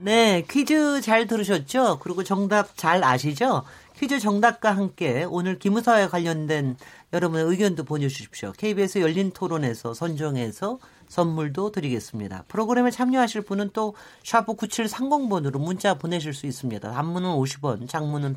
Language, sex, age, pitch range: Korean, male, 40-59, 150-220 Hz